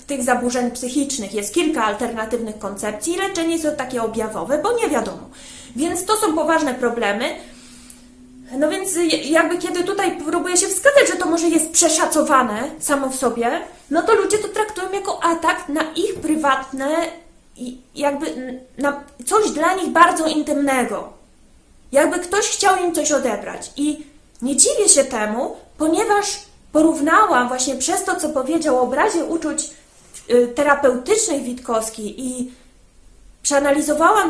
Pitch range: 240-330 Hz